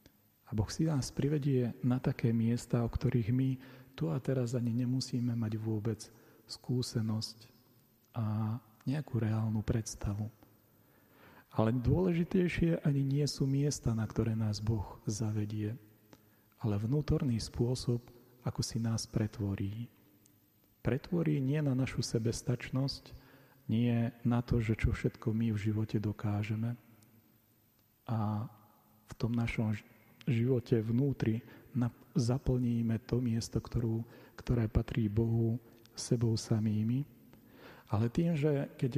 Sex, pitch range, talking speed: male, 110-130 Hz, 120 wpm